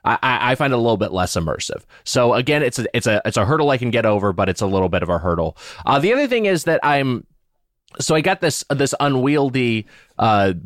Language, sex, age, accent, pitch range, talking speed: English, male, 20-39, American, 100-140 Hz, 250 wpm